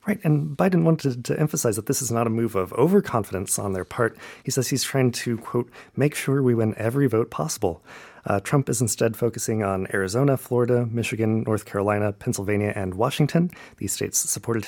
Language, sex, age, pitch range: Korean, male, 30-49, 110-140 Hz